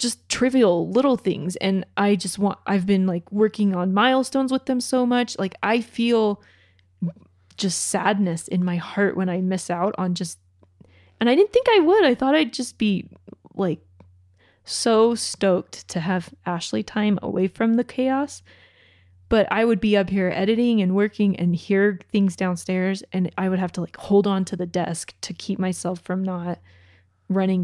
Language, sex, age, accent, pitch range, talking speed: English, female, 20-39, American, 175-225 Hz, 180 wpm